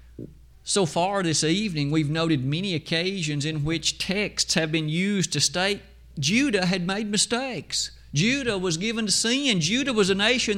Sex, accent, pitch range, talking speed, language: male, American, 135-195 Hz, 165 wpm, English